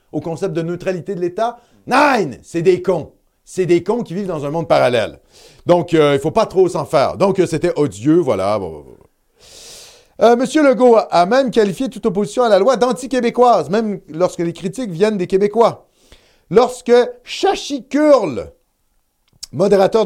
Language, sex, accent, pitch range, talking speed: French, male, French, 180-260 Hz, 160 wpm